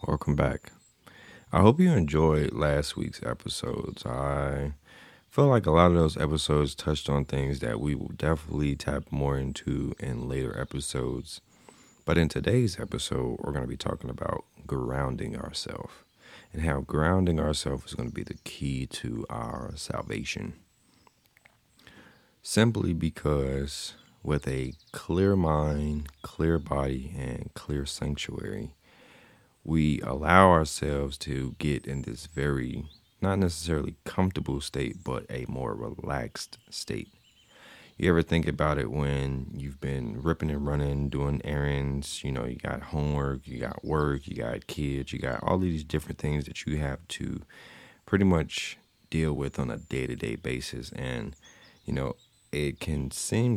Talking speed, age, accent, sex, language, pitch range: 150 wpm, 30-49, American, male, English, 70-80 Hz